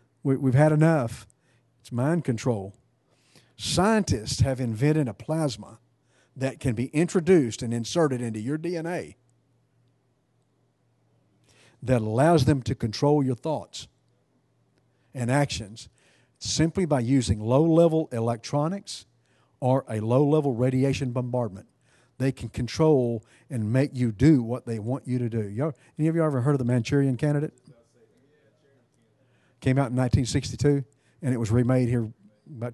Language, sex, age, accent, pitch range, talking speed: English, male, 50-69, American, 120-145 Hz, 130 wpm